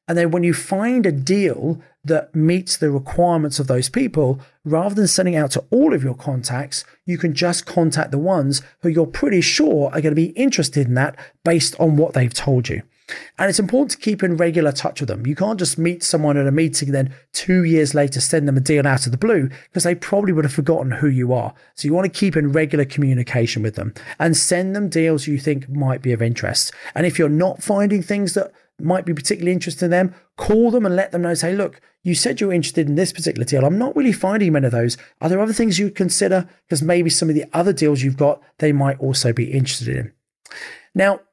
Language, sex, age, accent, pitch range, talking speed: English, male, 40-59, British, 140-180 Hz, 240 wpm